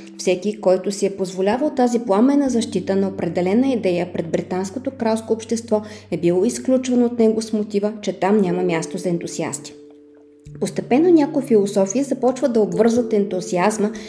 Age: 20-39